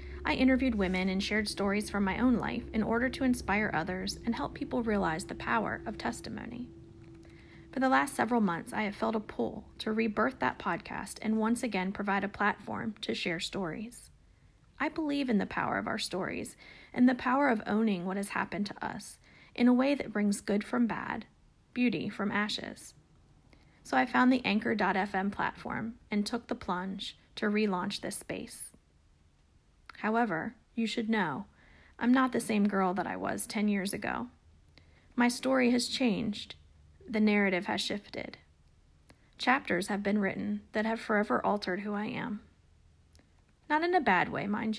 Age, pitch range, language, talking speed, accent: 30-49, 185-230 Hz, English, 175 wpm, American